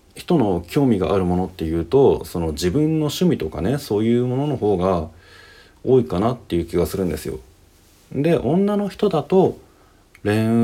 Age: 40-59